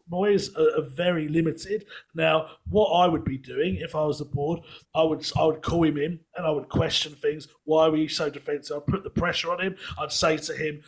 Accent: British